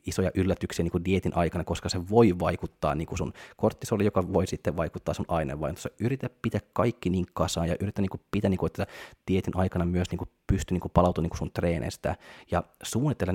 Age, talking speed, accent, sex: 20-39, 200 wpm, native, male